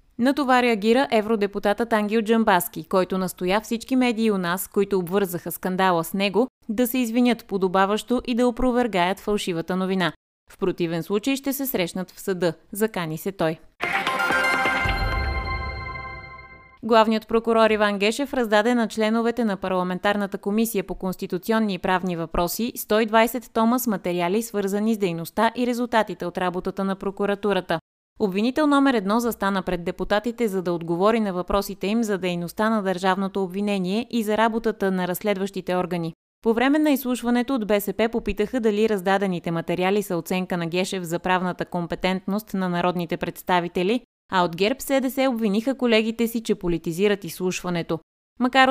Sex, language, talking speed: female, Bulgarian, 150 wpm